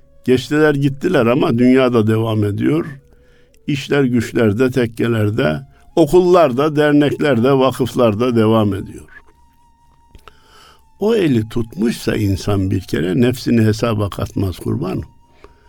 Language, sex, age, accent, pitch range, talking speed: Turkish, male, 60-79, native, 110-150 Hz, 95 wpm